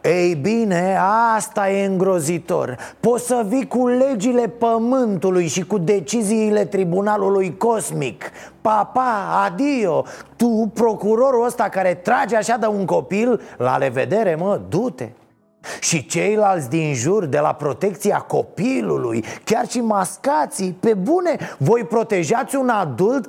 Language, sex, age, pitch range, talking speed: Romanian, male, 30-49, 185-235 Hz, 125 wpm